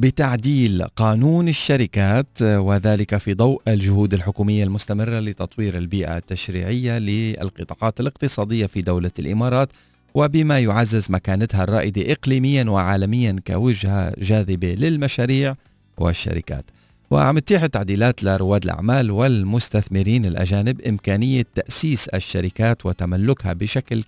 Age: 40-59